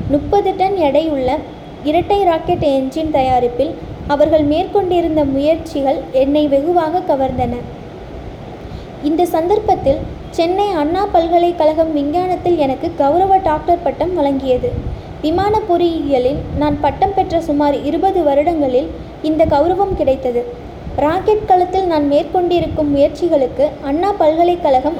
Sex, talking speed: female, 100 wpm